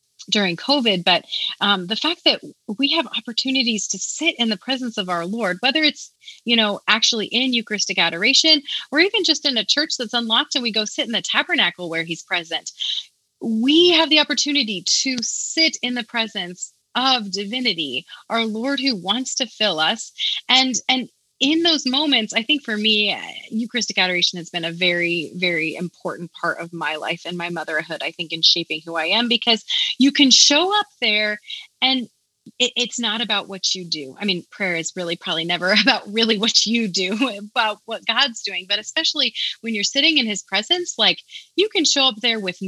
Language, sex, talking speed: English, female, 195 wpm